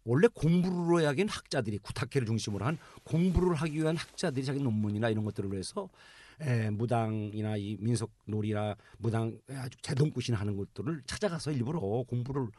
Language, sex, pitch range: Korean, male, 115-175 Hz